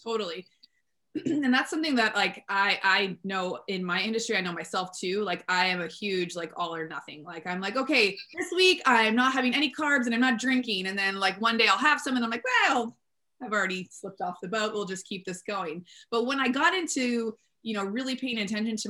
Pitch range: 185-235 Hz